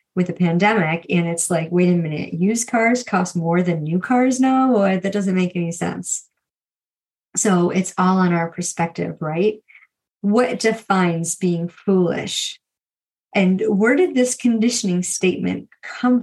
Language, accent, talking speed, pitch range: English, American, 150 wpm, 180-230 Hz